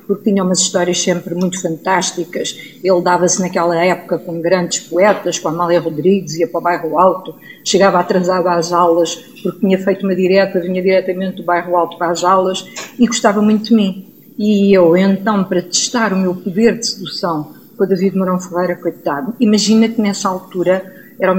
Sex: female